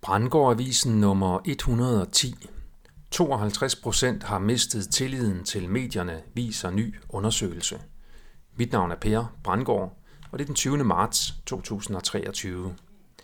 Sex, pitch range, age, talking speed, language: male, 100-130 Hz, 40-59, 105 wpm, Danish